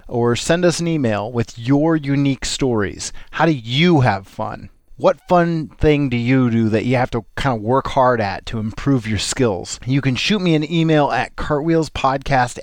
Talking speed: 195 wpm